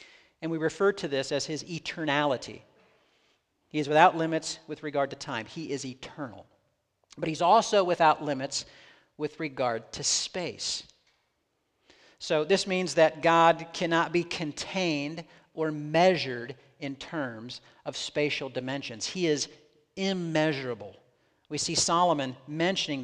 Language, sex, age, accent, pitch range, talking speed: English, male, 50-69, American, 135-175 Hz, 130 wpm